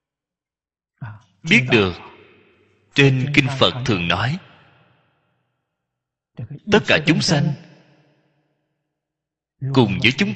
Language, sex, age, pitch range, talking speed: Vietnamese, male, 30-49, 130-165 Hz, 80 wpm